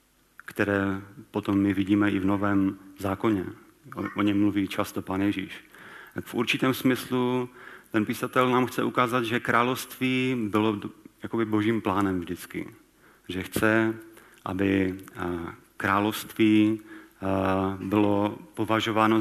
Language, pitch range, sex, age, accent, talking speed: Czech, 100-115 Hz, male, 40-59, native, 115 wpm